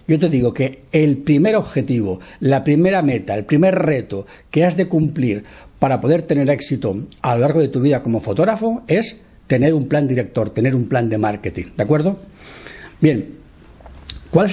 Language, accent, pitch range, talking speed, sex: Spanish, Spanish, 125-170 Hz, 180 wpm, male